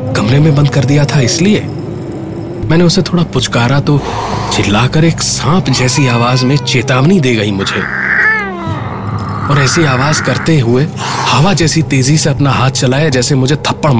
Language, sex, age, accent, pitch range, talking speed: Hindi, male, 30-49, native, 105-135 Hz, 75 wpm